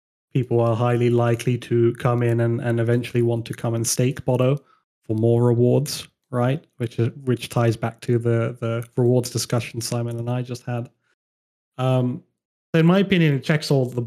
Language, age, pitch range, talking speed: English, 30-49, 115-130 Hz, 190 wpm